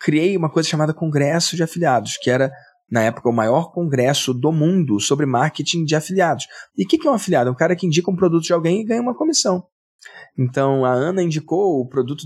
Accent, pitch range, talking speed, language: Brazilian, 125-175 Hz, 220 wpm, Portuguese